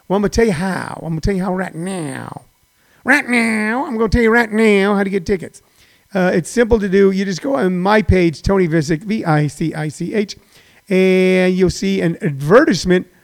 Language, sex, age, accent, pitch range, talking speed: English, male, 40-59, American, 165-210 Hz, 200 wpm